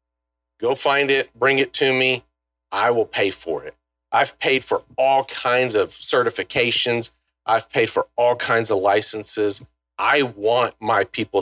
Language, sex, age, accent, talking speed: English, male, 40-59, American, 160 wpm